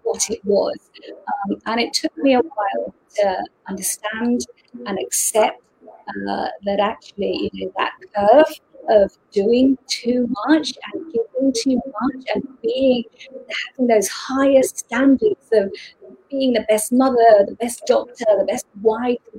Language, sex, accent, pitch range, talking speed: English, female, British, 215-290 Hz, 150 wpm